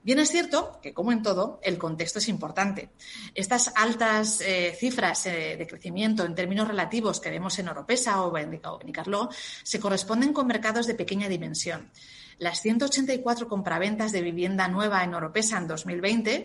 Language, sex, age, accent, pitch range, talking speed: Spanish, female, 30-49, Spanish, 180-225 Hz, 160 wpm